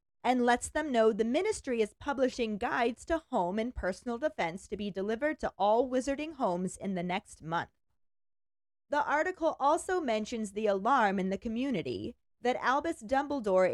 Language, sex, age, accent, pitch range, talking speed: English, female, 30-49, American, 195-270 Hz, 160 wpm